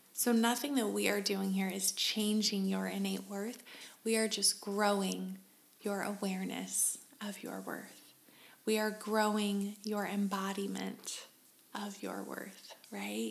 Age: 20-39